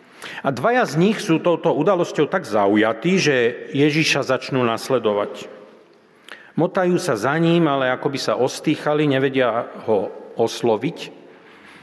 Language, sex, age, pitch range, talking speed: Slovak, male, 40-59, 110-165 Hz, 125 wpm